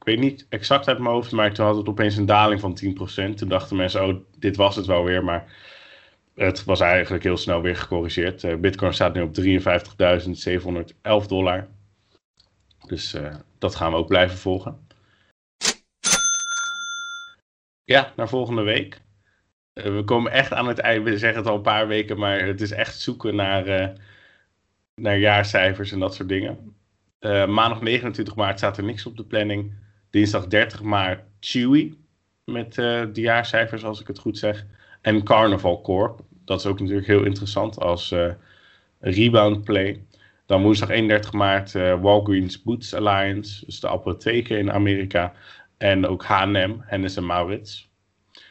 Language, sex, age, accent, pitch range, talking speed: Dutch, male, 30-49, Dutch, 95-110 Hz, 165 wpm